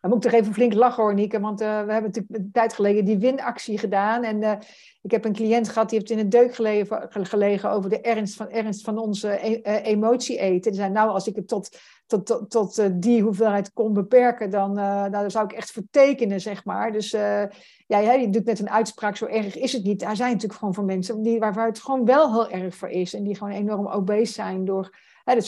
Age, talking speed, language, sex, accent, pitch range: 60-79, 255 wpm, Dutch, female, Dutch, 200-225 Hz